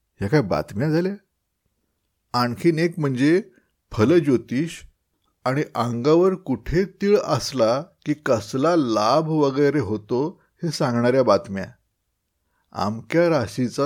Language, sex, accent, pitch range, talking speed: Marathi, male, native, 110-155 Hz, 70 wpm